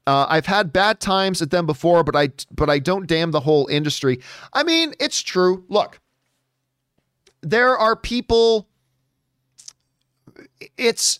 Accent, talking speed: American, 140 wpm